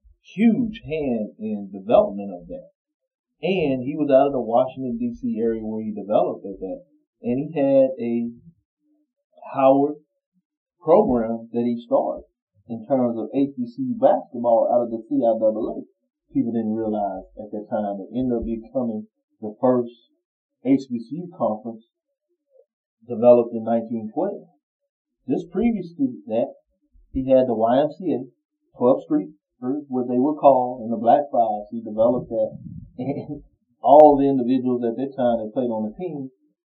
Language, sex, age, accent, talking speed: English, male, 30-49, American, 145 wpm